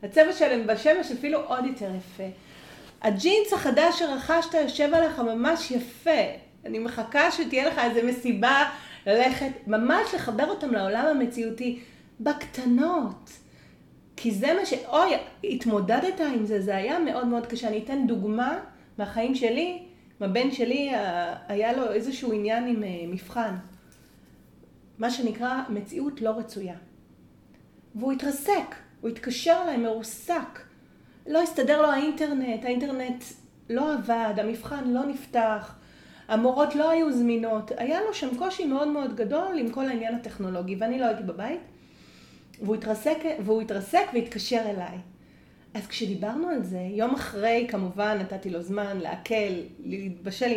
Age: 40-59